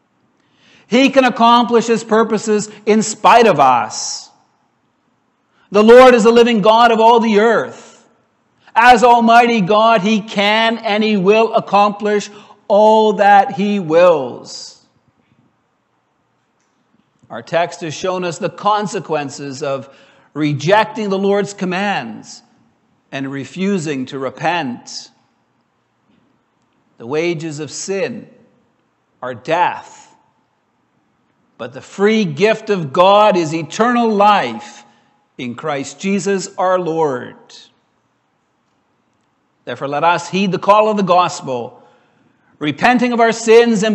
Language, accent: English, American